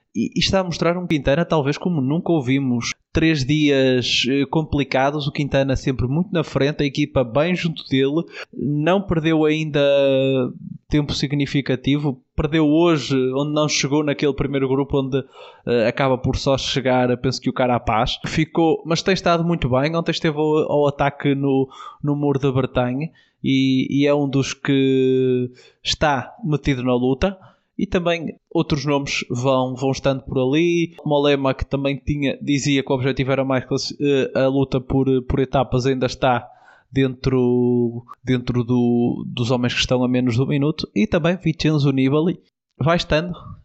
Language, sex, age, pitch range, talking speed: Portuguese, male, 20-39, 130-150 Hz, 160 wpm